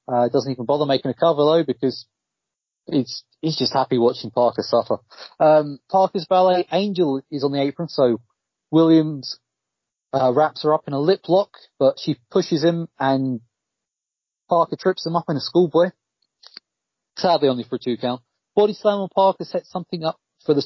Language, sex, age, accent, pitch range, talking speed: English, male, 30-49, British, 130-170 Hz, 175 wpm